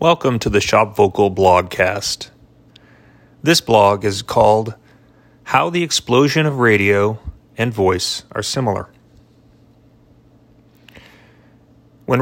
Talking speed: 100 wpm